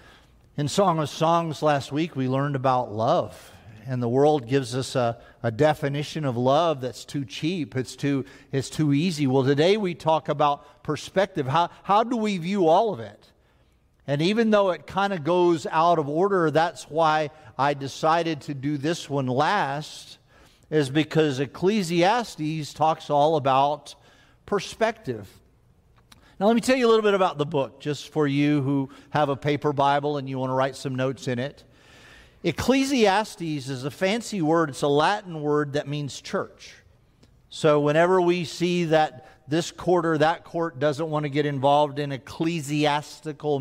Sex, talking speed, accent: male, 175 wpm, American